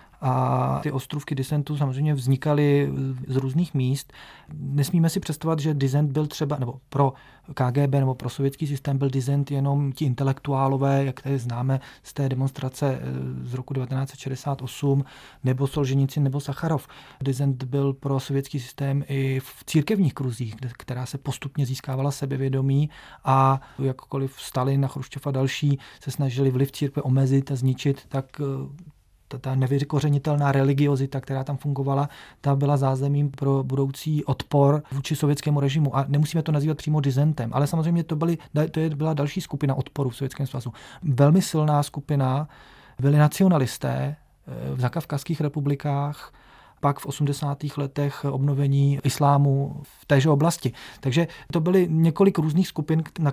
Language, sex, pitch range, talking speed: Czech, male, 135-150 Hz, 140 wpm